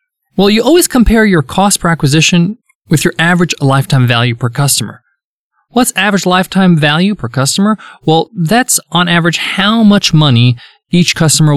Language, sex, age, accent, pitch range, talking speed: English, male, 20-39, American, 150-220 Hz, 155 wpm